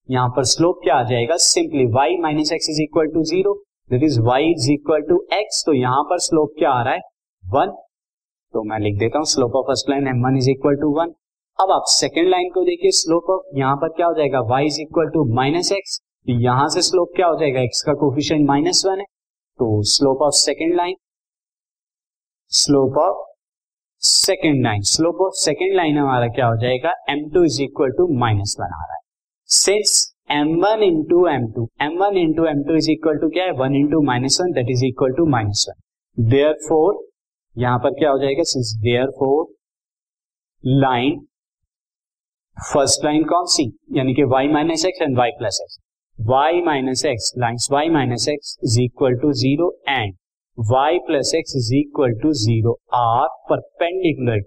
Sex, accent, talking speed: male, native, 140 wpm